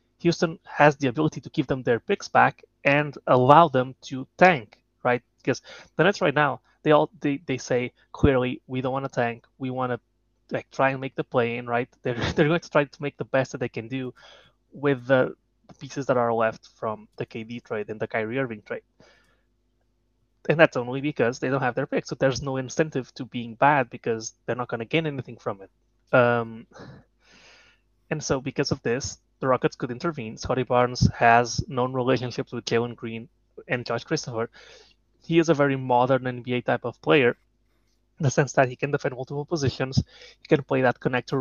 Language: English